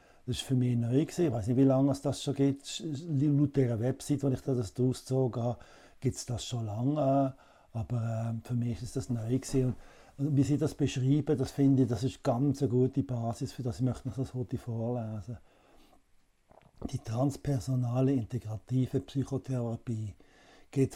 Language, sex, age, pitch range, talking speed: German, male, 60-79, 115-135 Hz, 180 wpm